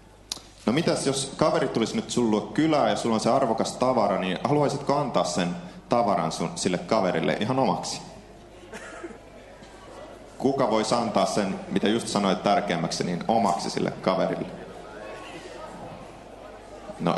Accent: native